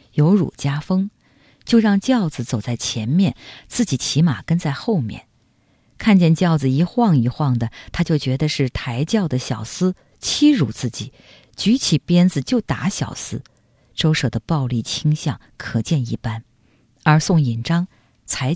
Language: Chinese